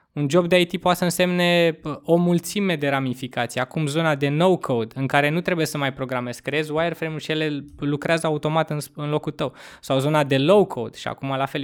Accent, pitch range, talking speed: native, 130-165 Hz, 200 wpm